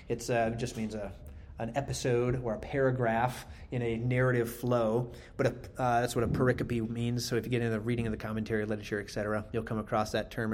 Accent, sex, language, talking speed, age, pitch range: American, male, English, 230 wpm, 30-49, 115-140 Hz